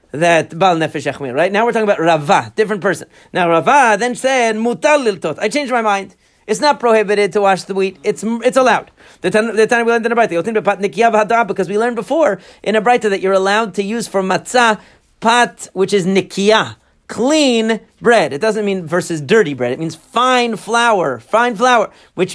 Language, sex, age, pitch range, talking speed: English, male, 40-59, 185-230 Hz, 180 wpm